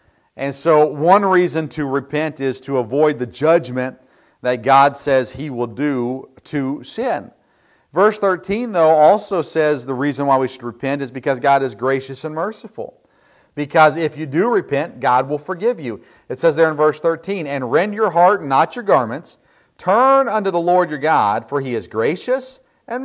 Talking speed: 180 wpm